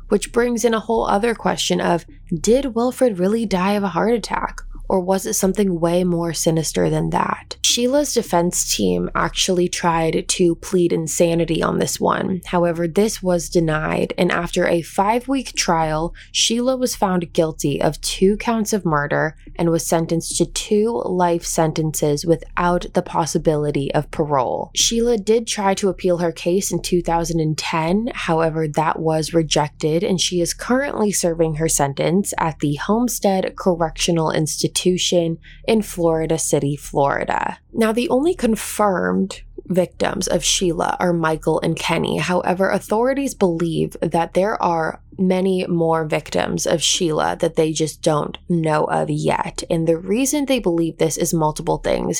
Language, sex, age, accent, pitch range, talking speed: English, female, 20-39, American, 160-195 Hz, 155 wpm